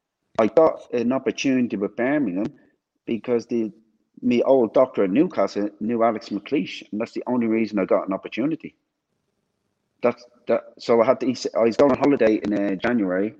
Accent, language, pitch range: British, English, 100-120 Hz